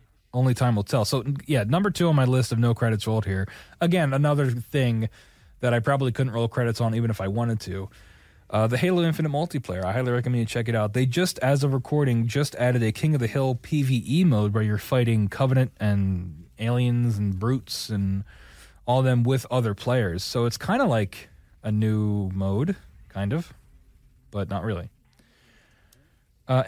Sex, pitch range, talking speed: male, 110-145 Hz, 190 wpm